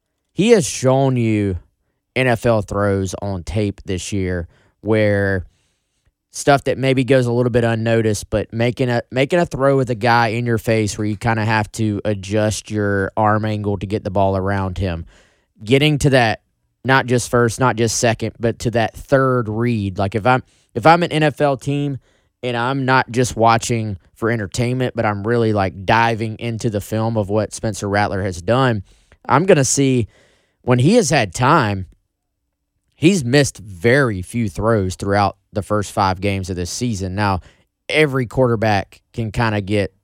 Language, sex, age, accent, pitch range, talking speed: English, male, 20-39, American, 100-120 Hz, 175 wpm